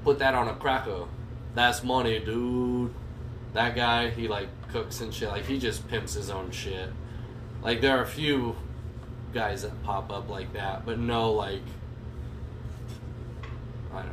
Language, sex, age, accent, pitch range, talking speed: English, male, 20-39, American, 110-120 Hz, 160 wpm